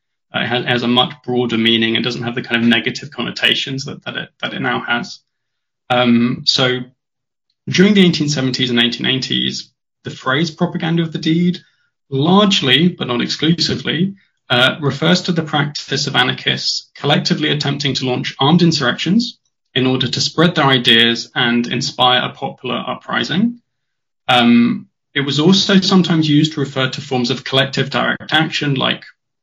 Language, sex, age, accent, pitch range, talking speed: English, male, 20-39, British, 120-160 Hz, 160 wpm